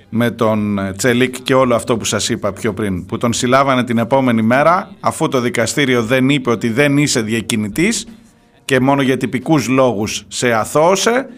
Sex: male